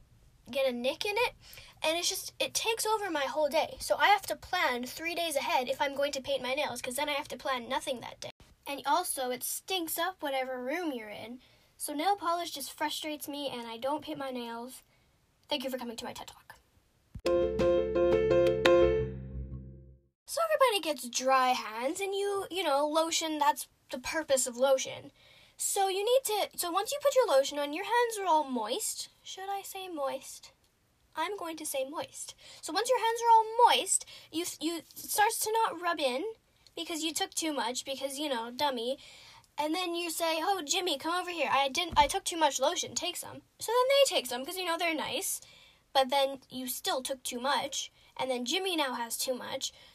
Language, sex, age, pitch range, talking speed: English, female, 10-29, 265-350 Hz, 205 wpm